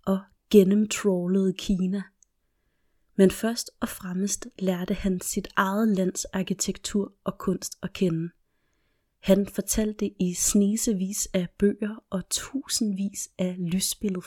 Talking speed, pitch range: 110 wpm, 185-210 Hz